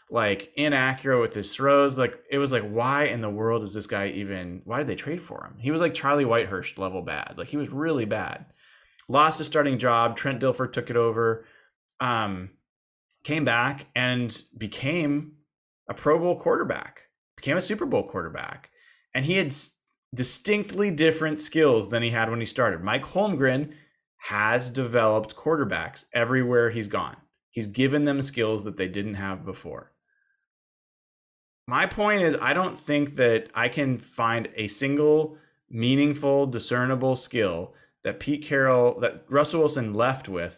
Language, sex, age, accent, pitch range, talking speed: English, male, 30-49, American, 105-145 Hz, 165 wpm